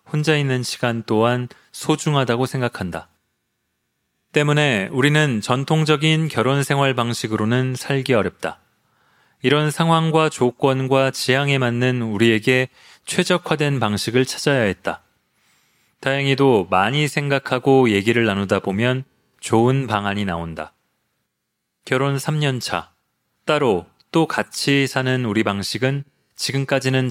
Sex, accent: male, native